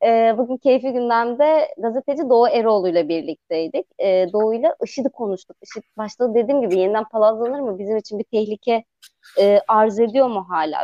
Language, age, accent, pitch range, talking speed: Turkish, 30-49, native, 190-265 Hz, 170 wpm